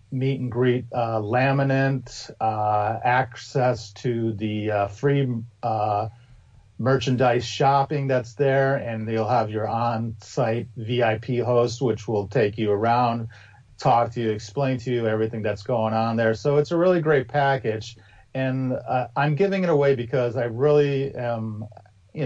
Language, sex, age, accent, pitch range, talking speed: English, male, 40-59, American, 110-130 Hz, 145 wpm